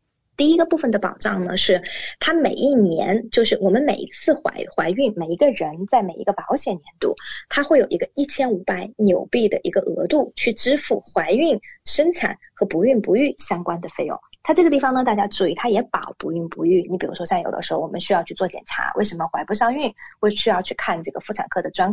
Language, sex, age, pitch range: Chinese, female, 20-39, 195-275 Hz